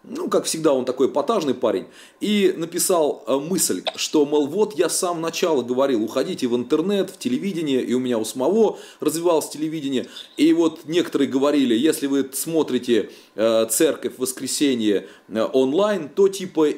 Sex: male